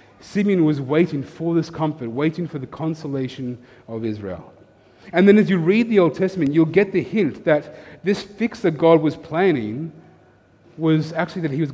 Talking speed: 185 wpm